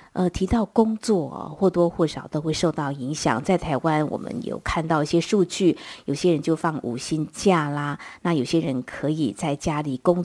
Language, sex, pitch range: Chinese, female, 150-190 Hz